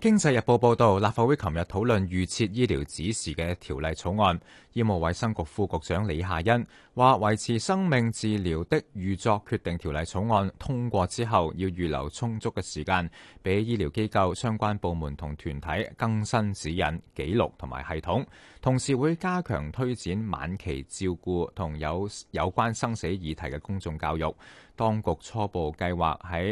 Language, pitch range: Chinese, 80-110 Hz